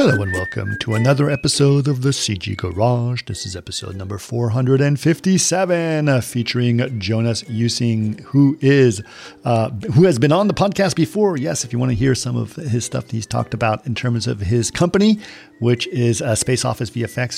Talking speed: 175 wpm